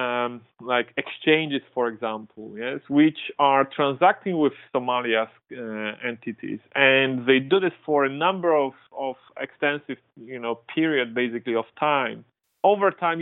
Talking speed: 135 wpm